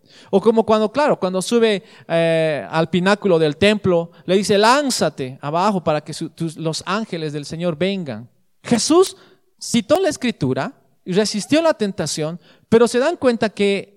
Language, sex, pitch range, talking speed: Spanish, male, 160-225 Hz, 160 wpm